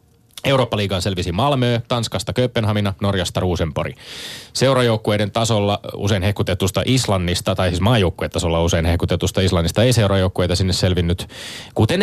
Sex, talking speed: male, 115 wpm